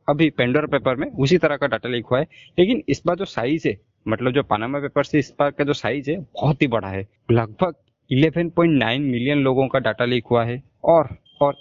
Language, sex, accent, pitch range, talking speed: Hindi, male, native, 120-155 Hz, 220 wpm